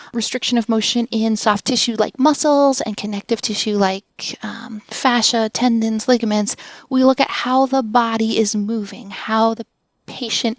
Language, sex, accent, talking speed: English, female, American, 155 wpm